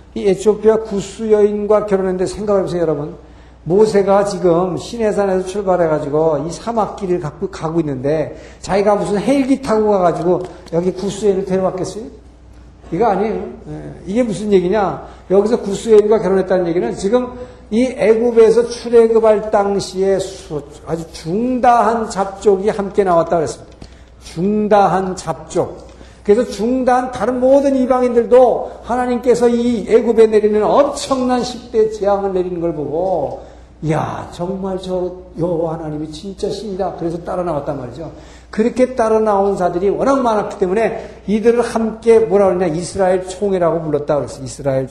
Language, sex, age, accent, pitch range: Korean, male, 60-79, native, 170-220 Hz